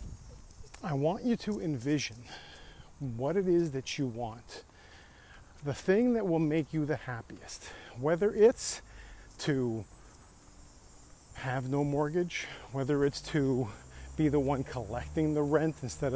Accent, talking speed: American, 130 wpm